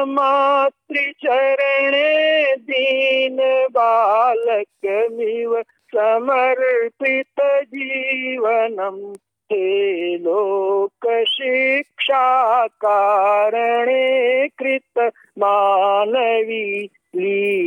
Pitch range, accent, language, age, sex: 225-275 Hz, native, Bengali, 50-69, male